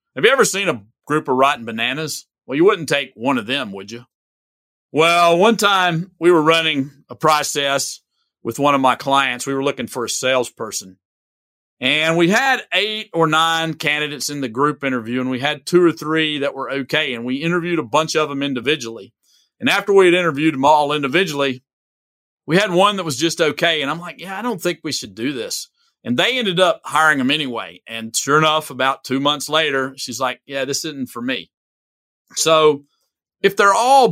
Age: 50-69